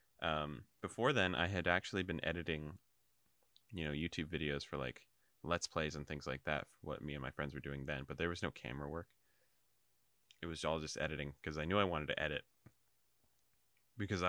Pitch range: 70-85 Hz